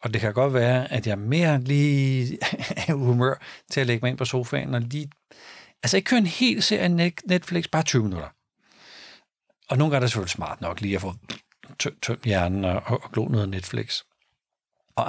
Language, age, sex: Danish, 60-79, male